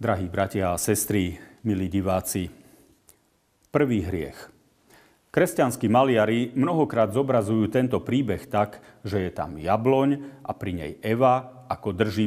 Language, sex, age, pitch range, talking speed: Slovak, male, 40-59, 95-120 Hz, 120 wpm